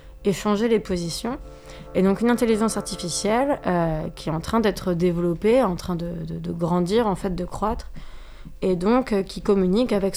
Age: 20-39